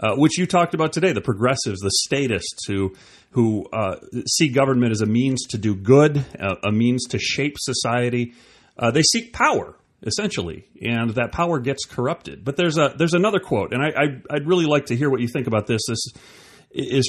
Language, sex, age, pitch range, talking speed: English, male, 30-49, 100-140 Hz, 195 wpm